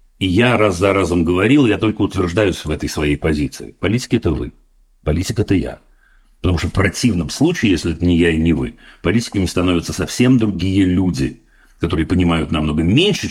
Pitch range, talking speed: 80-105 Hz, 190 wpm